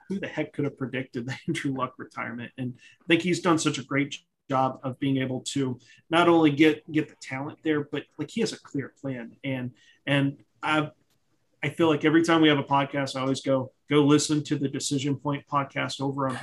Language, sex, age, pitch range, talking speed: English, male, 30-49, 130-160 Hz, 225 wpm